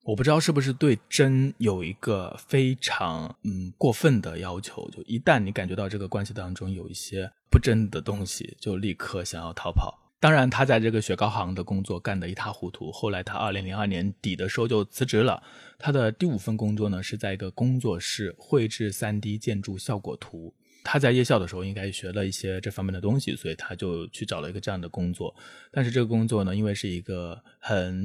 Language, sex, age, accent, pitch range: Chinese, male, 20-39, native, 95-120 Hz